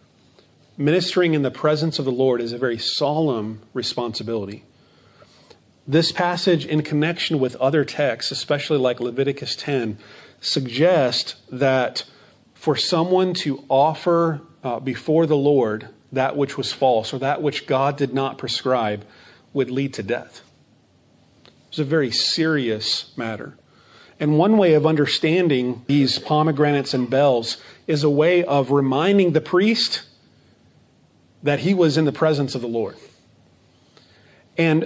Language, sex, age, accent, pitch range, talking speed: English, male, 40-59, American, 130-155 Hz, 135 wpm